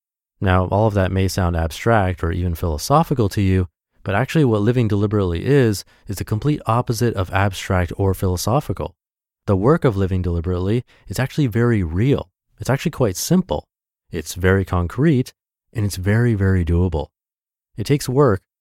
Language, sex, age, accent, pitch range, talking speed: English, male, 30-49, American, 90-120 Hz, 160 wpm